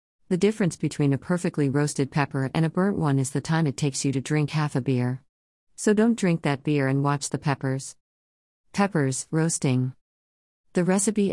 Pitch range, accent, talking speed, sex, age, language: 130-160 Hz, American, 185 wpm, female, 40-59, Romanian